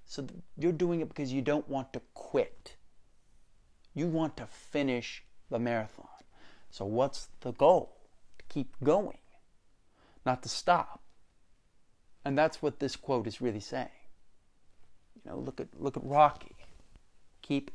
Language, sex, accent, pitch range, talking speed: English, male, American, 115-150 Hz, 140 wpm